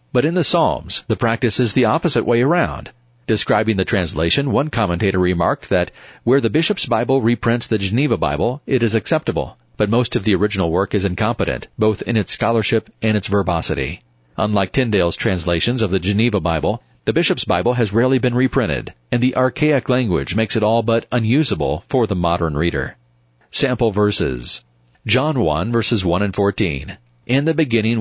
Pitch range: 100-125 Hz